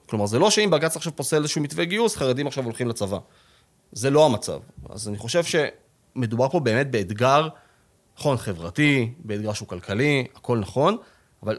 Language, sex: English, male